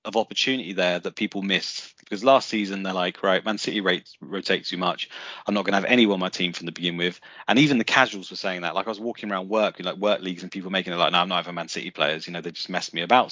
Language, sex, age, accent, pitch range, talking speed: English, male, 30-49, British, 95-120 Hz, 300 wpm